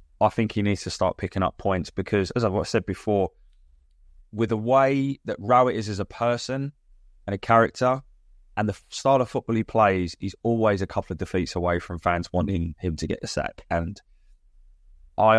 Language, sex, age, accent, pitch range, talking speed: English, male, 20-39, British, 80-120 Hz, 195 wpm